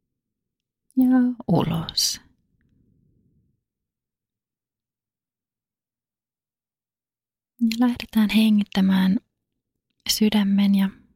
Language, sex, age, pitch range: Finnish, female, 30-49, 185-215 Hz